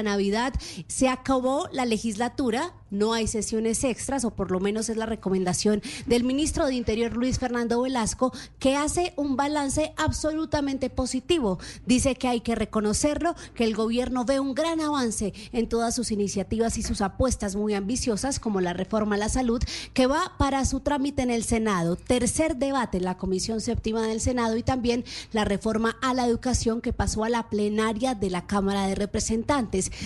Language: Spanish